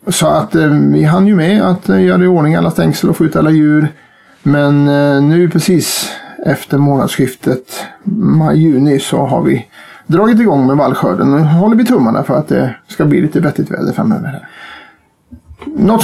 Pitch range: 150-200 Hz